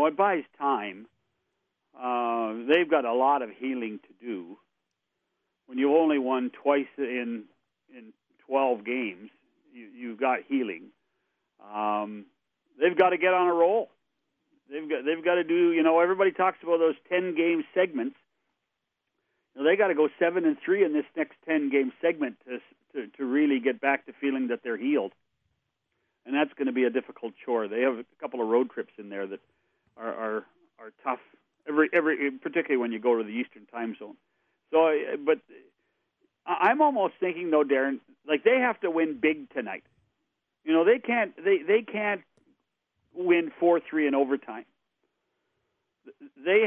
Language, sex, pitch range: English, male, 135-195 Hz